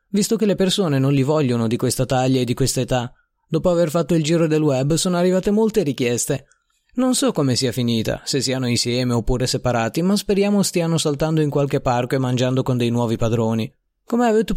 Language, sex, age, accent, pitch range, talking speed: Italian, male, 30-49, native, 125-175 Hz, 205 wpm